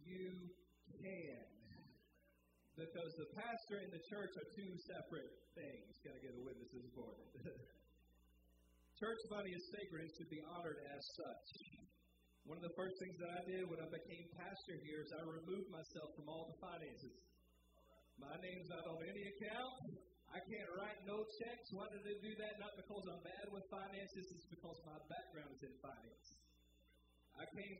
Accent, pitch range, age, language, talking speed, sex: American, 155-205 Hz, 40-59, English, 175 wpm, male